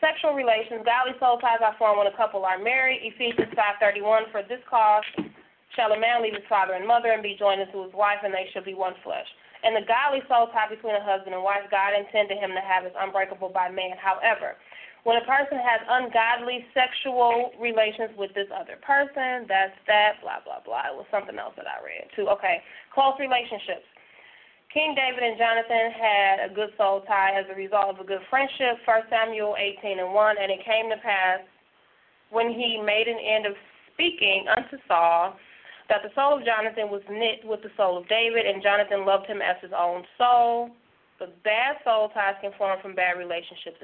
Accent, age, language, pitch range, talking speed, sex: American, 20-39, English, 195-235 Hz, 205 wpm, female